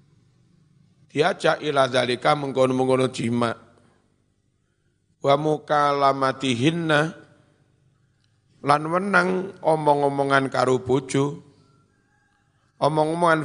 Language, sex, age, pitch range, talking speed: Indonesian, male, 50-69, 120-150 Hz, 65 wpm